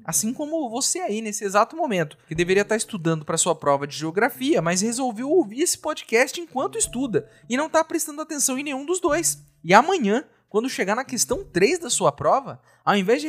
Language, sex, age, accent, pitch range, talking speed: Portuguese, male, 30-49, Brazilian, 185-295 Hz, 205 wpm